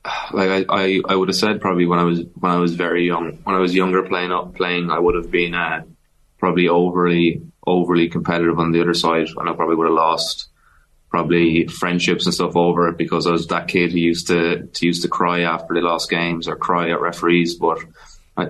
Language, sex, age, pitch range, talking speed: English, male, 20-39, 85-90 Hz, 225 wpm